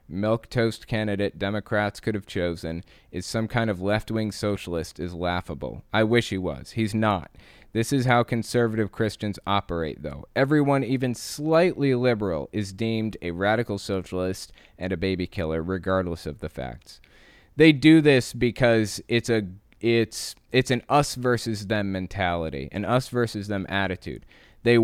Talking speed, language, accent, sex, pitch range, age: 145 wpm, English, American, male, 90-115 Hz, 20-39